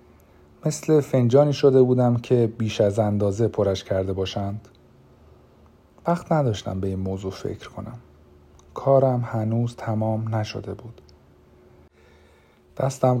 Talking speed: 110 wpm